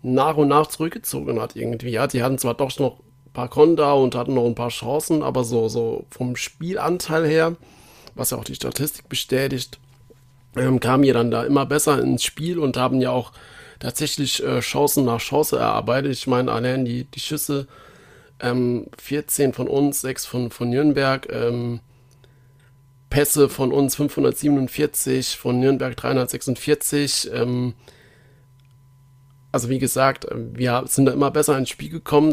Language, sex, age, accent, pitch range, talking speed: German, male, 40-59, German, 125-145 Hz, 160 wpm